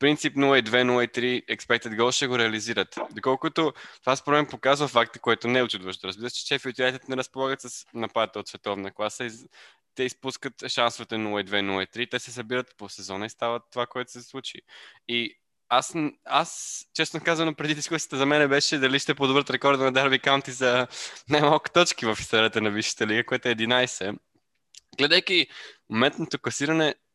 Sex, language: male, Bulgarian